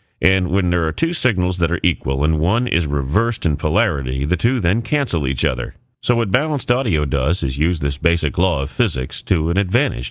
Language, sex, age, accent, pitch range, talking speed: English, male, 40-59, American, 80-110 Hz, 215 wpm